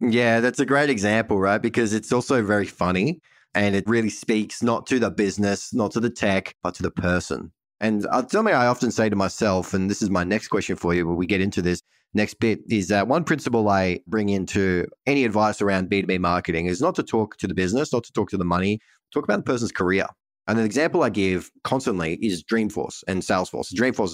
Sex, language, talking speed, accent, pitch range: male, English, 225 wpm, Australian, 95-110 Hz